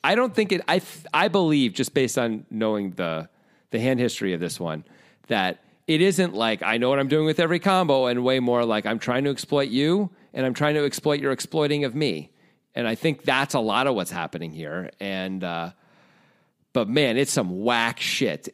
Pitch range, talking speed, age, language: 105-165 Hz, 215 wpm, 40-59, English